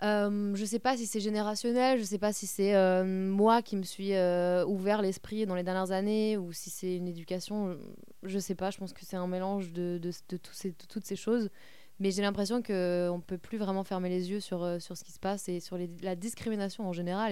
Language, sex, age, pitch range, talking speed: French, female, 20-39, 180-210 Hz, 255 wpm